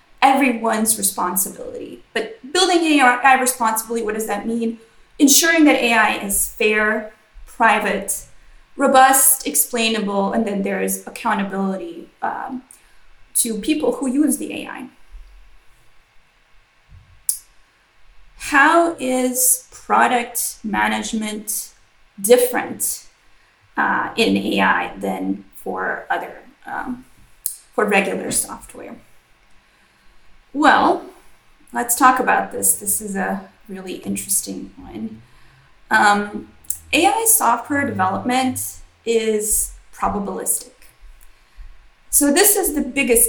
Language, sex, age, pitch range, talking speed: English, female, 20-39, 205-270 Hz, 90 wpm